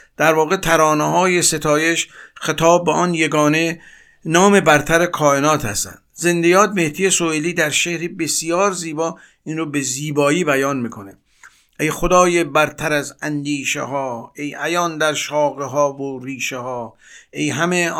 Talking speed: 135 wpm